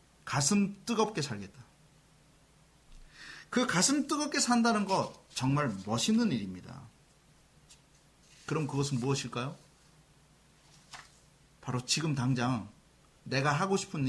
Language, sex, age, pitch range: Korean, male, 40-59, 145-235 Hz